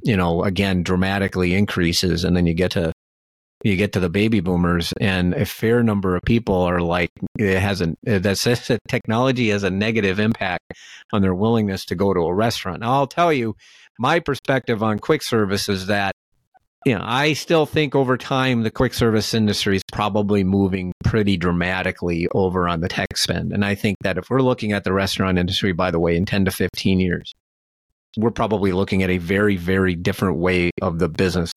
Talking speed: 200 wpm